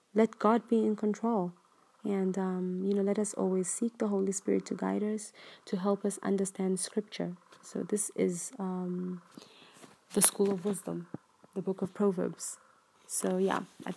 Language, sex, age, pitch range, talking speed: English, female, 20-39, 185-210 Hz, 170 wpm